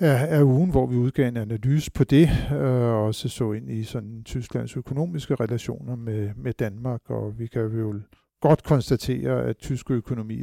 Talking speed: 175 wpm